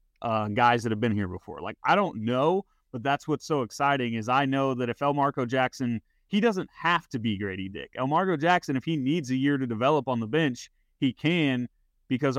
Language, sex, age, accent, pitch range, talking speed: English, male, 30-49, American, 115-150 Hz, 230 wpm